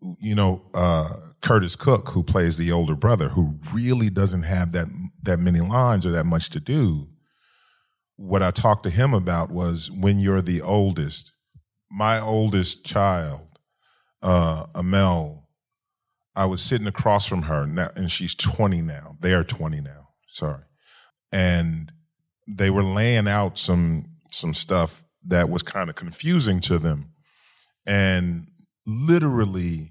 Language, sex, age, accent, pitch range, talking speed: English, male, 40-59, American, 85-110 Hz, 140 wpm